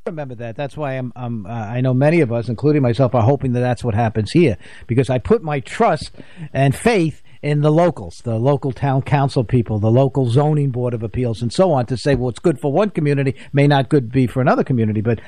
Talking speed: 240 wpm